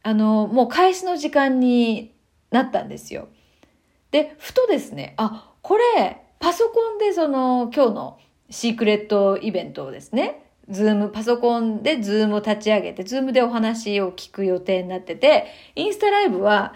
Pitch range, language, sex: 215-315 Hz, Japanese, female